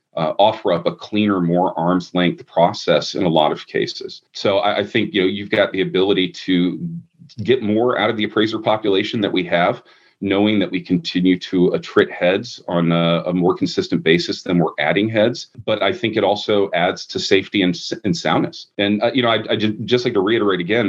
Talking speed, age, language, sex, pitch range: 215 wpm, 40-59, English, male, 90-105 Hz